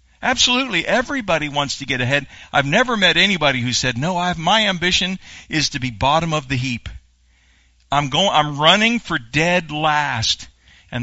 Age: 50-69